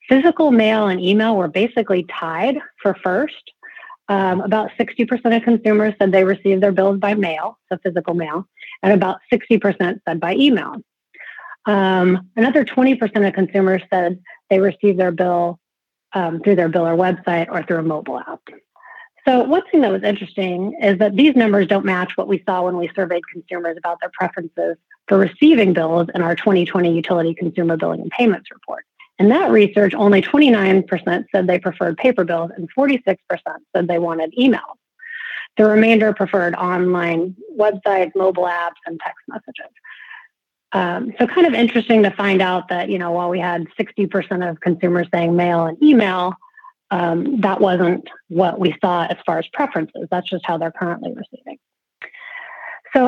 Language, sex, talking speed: English, female, 165 wpm